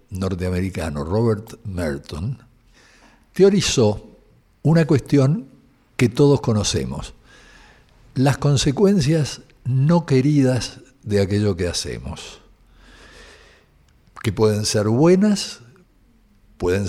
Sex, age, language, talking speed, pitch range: male, 60-79, Spanish, 80 wpm, 100-140 Hz